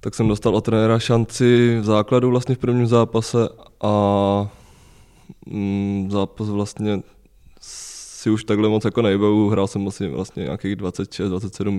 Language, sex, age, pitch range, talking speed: Czech, male, 20-39, 100-120 Hz, 145 wpm